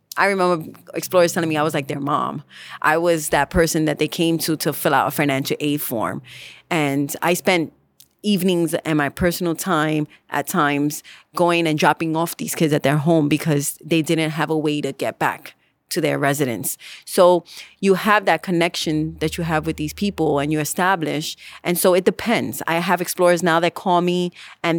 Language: English